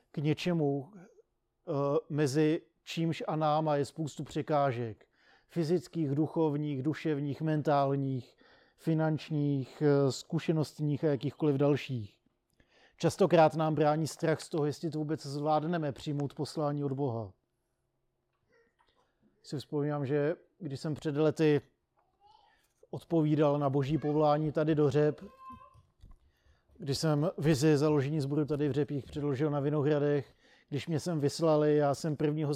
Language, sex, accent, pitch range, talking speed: Czech, male, native, 140-155 Hz, 120 wpm